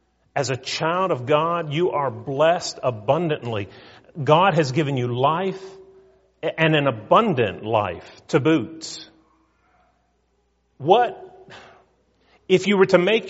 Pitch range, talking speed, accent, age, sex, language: 120-165 Hz, 115 wpm, American, 40-59, male, English